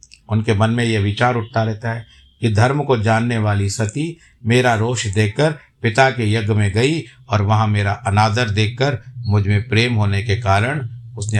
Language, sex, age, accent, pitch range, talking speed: Hindi, male, 50-69, native, 100-125 Hz, 180 wpm